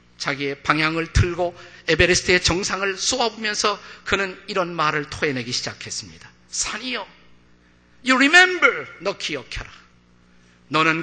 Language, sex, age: Korean, male, 50-69